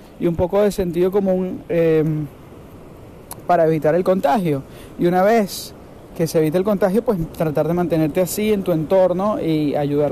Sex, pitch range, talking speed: male, 165-220 Hz, 170 wpm